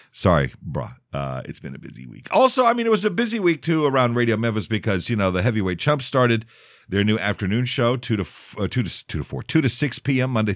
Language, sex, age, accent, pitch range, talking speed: English, male, 50-69, American, 90-140 Hz, 255 wpm